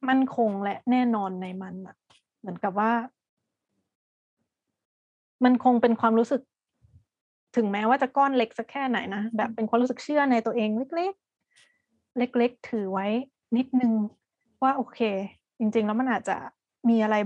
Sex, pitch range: female, 205-245 Hz